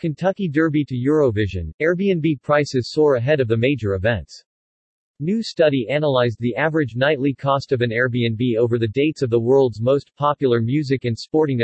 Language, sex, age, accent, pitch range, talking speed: English, male, 40-59, American, 125-150 Hz, 170 wpm